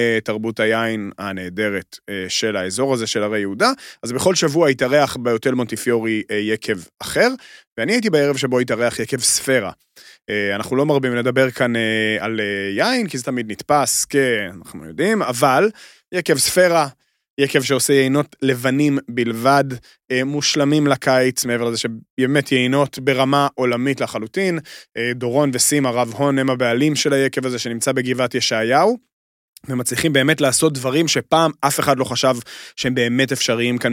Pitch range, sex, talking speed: 120-145 Hz, male, 140 wpm